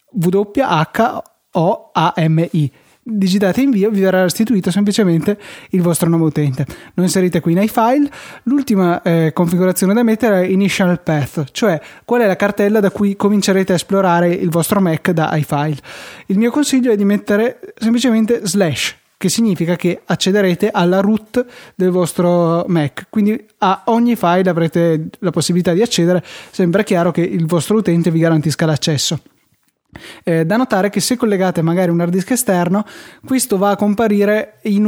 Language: Italian